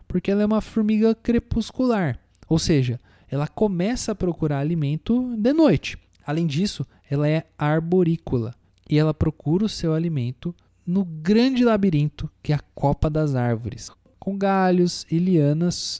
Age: 20-39